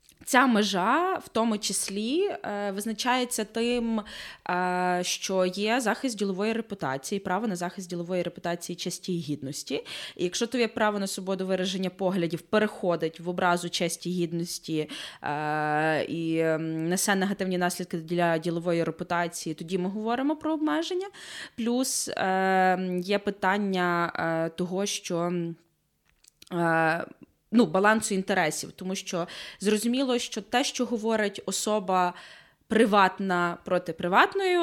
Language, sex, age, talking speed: Ukrainian, female, 20-39, 110 wpm